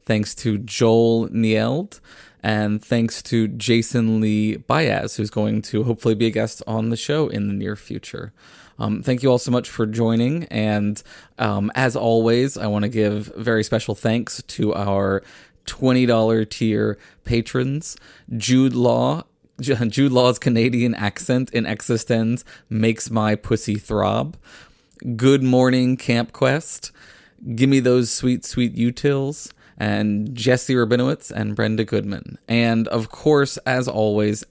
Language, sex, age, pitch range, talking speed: English, male, 20-39, 105-125 Hz, 140 wpm